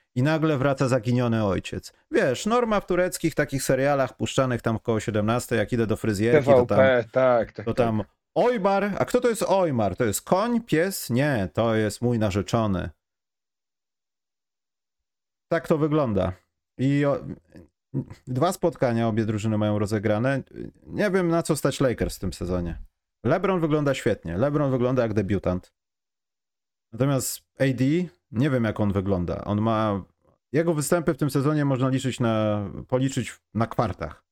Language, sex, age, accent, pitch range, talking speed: Polish, male, 30-49, native, 95-135 Hz, 150 wpm